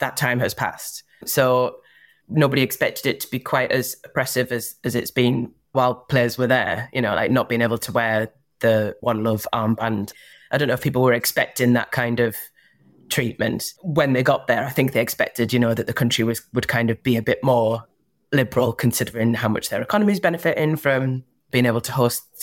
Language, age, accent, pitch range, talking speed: English, 20-39, British, 115-145 Hz, 210 wpm